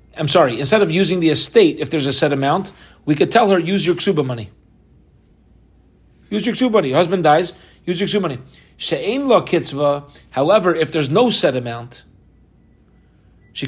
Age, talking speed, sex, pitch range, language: 40-59, 165 wpm, male, 135-170 Hz, English